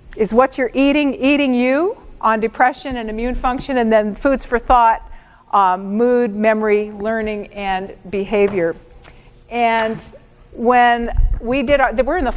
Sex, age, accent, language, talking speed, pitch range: female, 50-69, American, English, 145 wpm, 225-260 Hz